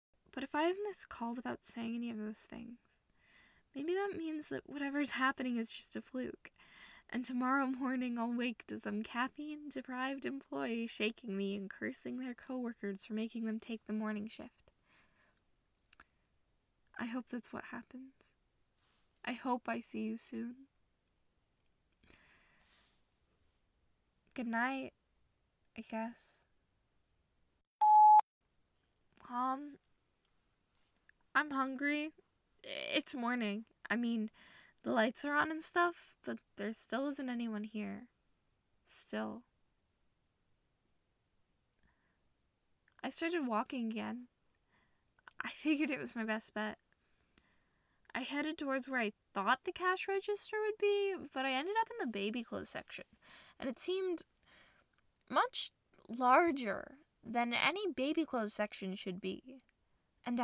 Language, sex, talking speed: English, female, 120 wpm